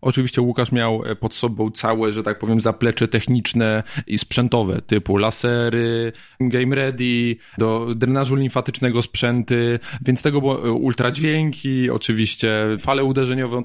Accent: native